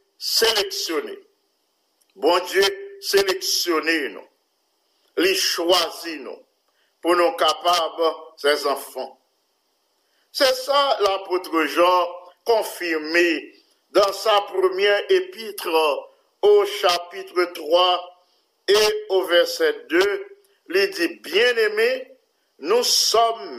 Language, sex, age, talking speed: English, male, 50-69, 85 wpm